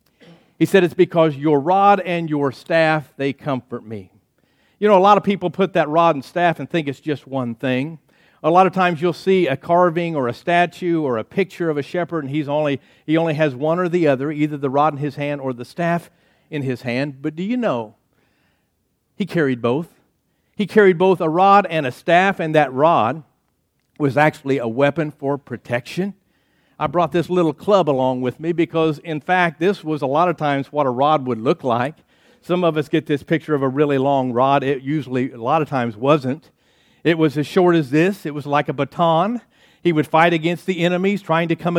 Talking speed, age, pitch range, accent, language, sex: 220 wpm, 50-69, 145-185 Hz, American, English, male